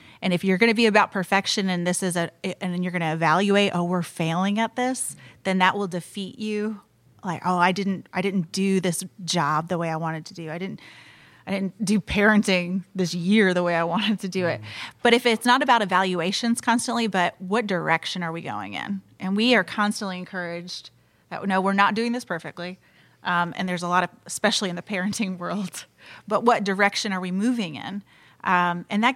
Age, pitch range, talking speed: 30-49, 175-210 Hz, 215 wpm